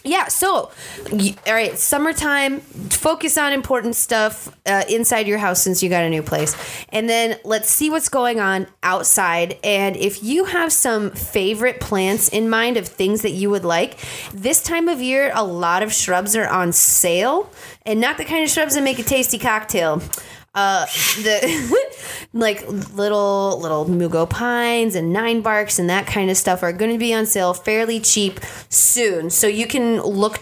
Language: English